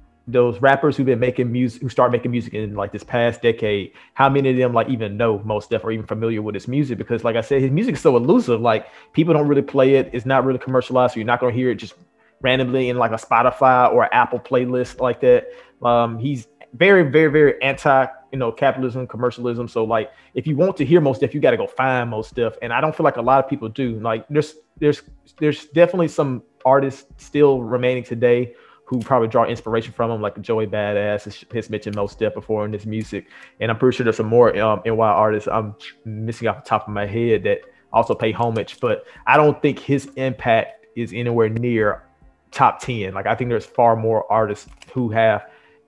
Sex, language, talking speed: male, English, 230 wpm